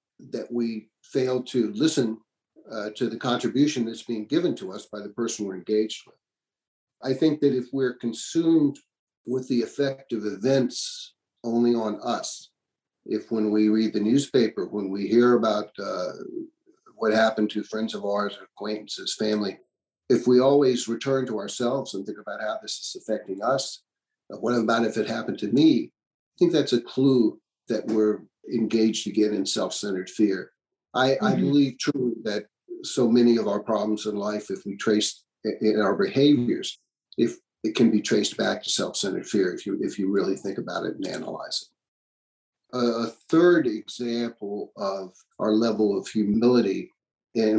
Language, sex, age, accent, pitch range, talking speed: English, male, 50-69, American, 105-135 Hz, 170 wpm